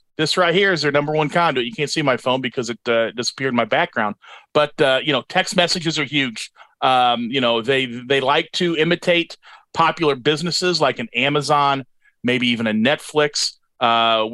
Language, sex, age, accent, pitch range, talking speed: English, male, 40-59, American, 125-150 Hz, 195 wpm